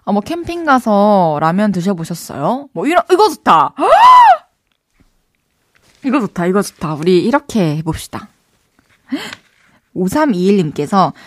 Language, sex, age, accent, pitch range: Korean, female, 20-39, native, 175-230 Hz